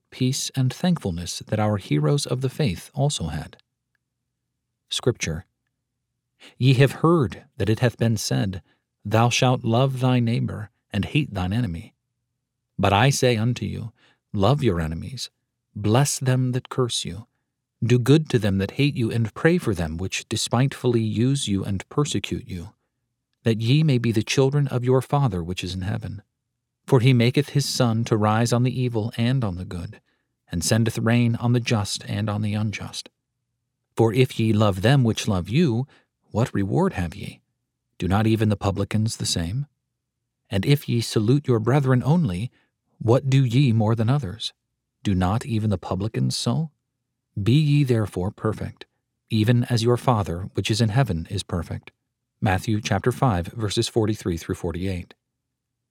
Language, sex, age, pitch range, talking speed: English, male, 40-59, 105-130 Hz, 165 wpm